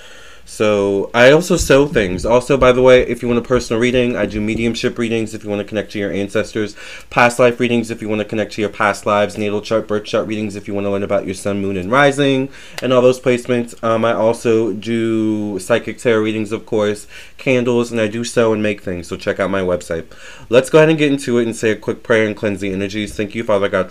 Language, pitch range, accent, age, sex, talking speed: English, 95-115 Hz, American, 30-49, male, 255 wpm